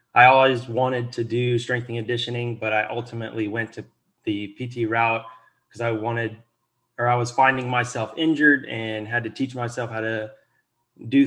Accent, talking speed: American, 175 wpm